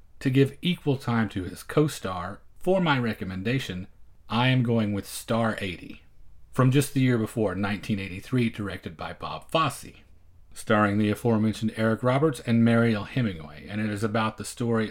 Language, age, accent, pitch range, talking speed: English, 40-59, American, 100-115 Hz, 160 wpm